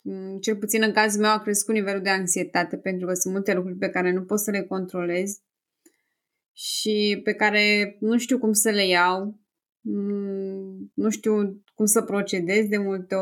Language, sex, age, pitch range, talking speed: Romanian, female, 20-39, 195-240 Hz, 175 wpm